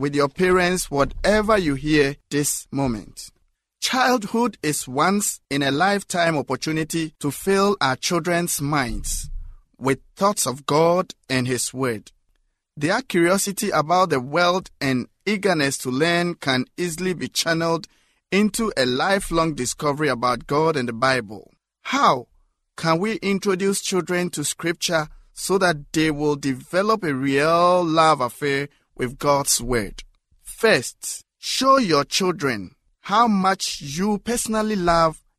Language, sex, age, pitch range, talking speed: English, male, 50-69, 140-190 Hz, 130 wpm